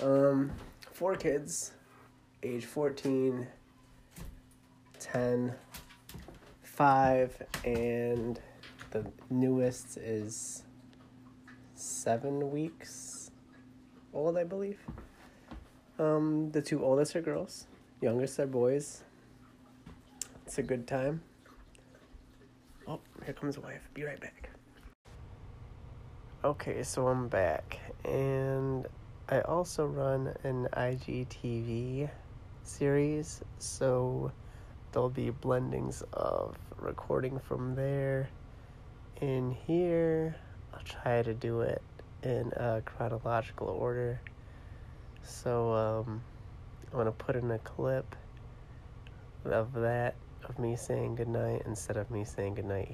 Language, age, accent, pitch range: English, 30-49, American, 115-135 Hz